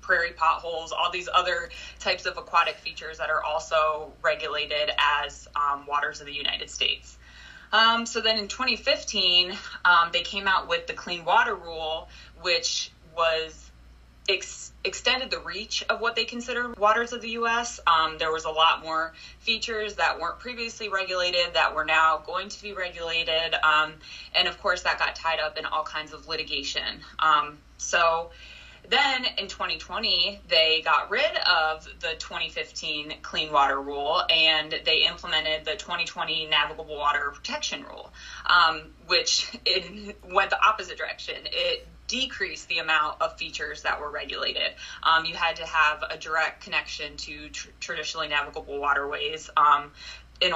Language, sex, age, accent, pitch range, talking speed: English, female, 20-39, American, 155-200 Hz, 155 wpm